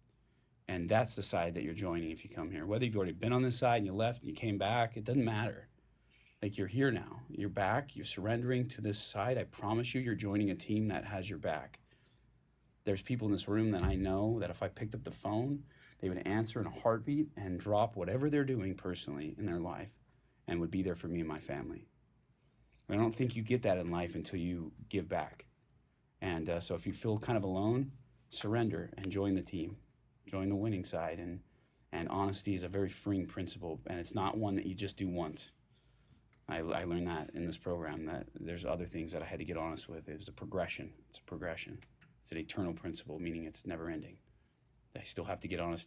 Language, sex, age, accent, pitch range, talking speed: English, male, 30-49, American, 90-115 Hz, 230 wpm